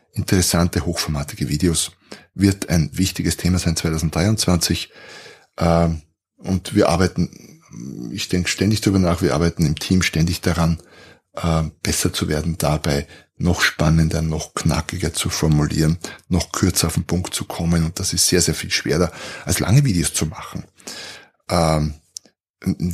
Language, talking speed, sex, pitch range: German, 140 wpm, male, 85-100 Hz